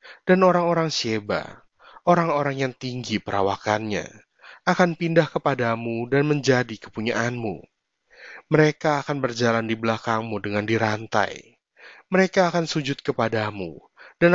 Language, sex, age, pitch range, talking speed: Indonesian, male, 30-49, 110-155 Hz, 105 wpm